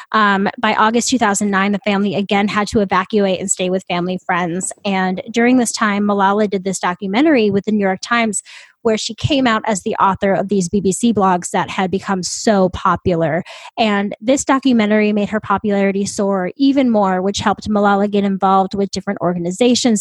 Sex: female